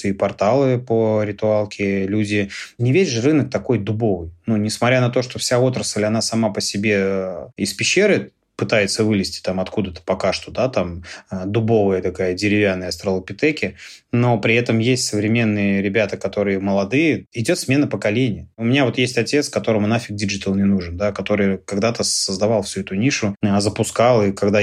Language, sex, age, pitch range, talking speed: Russian, male, 20-39, 100-115 Hz, 165 wpm